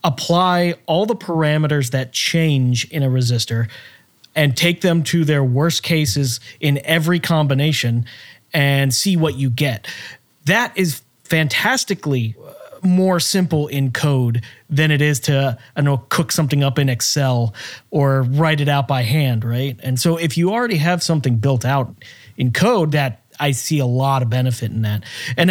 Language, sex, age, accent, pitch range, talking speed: English, male, 30-49, American, 130-165 Hz, 165 wpm